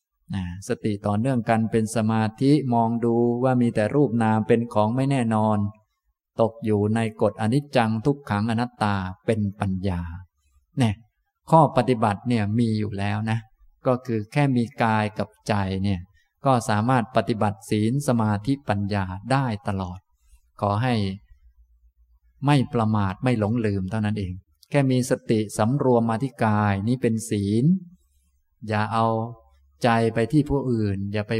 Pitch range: 100-115 Hz